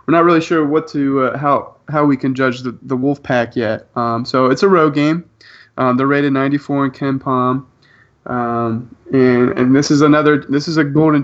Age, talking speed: 30-49, 215 wpm